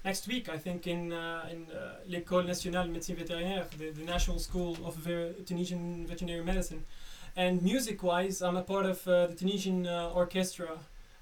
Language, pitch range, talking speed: English, 170-185 Hz, 180 wpm